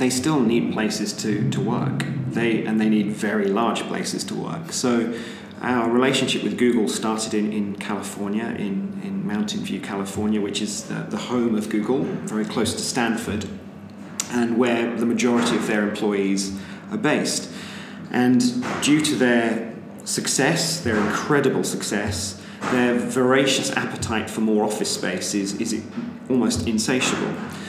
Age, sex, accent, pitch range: 40-59, male, British, 105-125 Hz